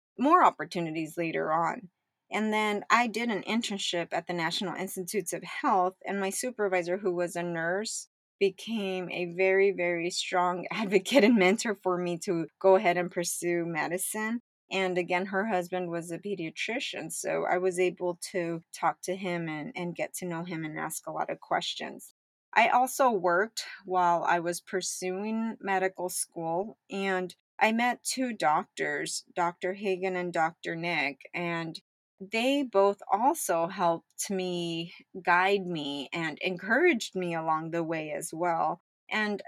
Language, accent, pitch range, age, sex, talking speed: English, American, 170-200 Hz, 30-49, female, 155 wpm